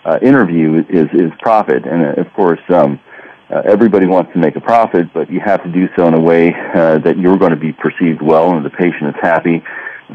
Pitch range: 80-95 Hz